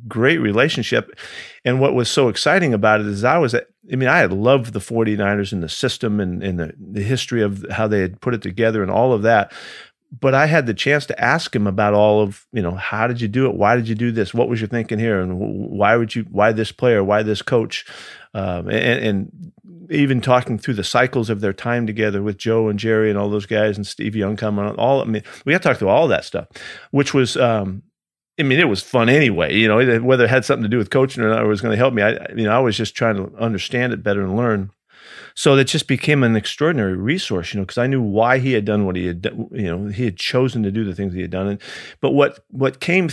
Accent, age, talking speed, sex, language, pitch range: American, 50-69, 260 wpm, male, English, 105-130 Hz